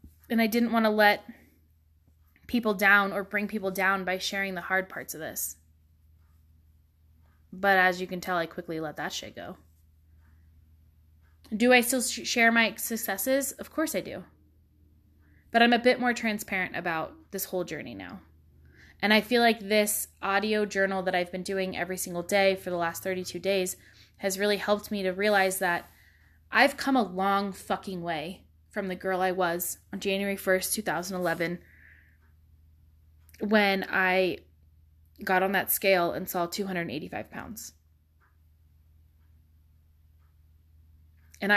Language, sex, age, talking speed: English, female, 20-39, 150 wpm